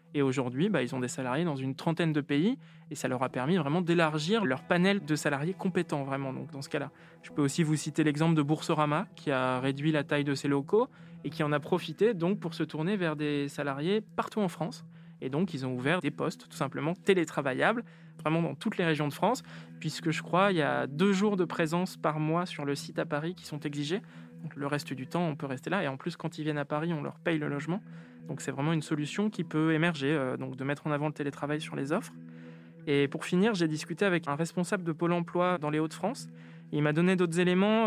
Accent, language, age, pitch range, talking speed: French, French, 20-39, 145-175 Hz, 250 wpm